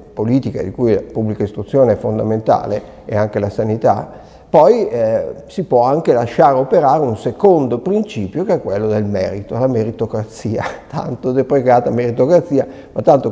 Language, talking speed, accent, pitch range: Italian, 155 wpm, native, 115-155 Hz